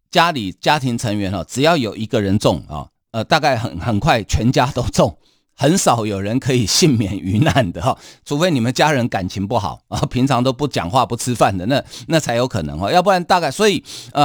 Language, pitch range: Chinese, 105-140 Hz